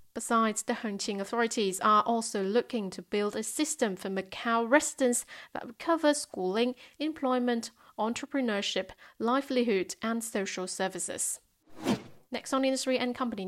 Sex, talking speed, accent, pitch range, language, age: female, 130 wpm, British, 205-250 Hz, English, 30-49